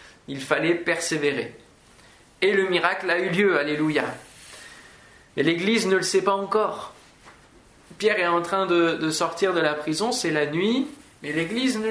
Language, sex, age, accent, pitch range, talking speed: French, male, 20-39, French, 155-195 Hz, 165 wpm